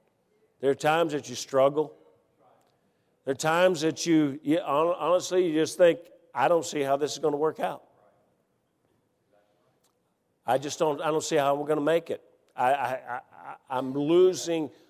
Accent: American